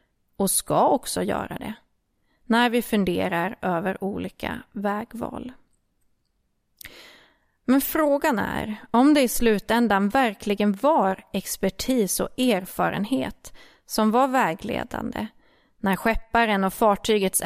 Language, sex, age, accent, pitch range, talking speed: Swedish, female, 30-49, native, 195-245 Hz, 105 wpm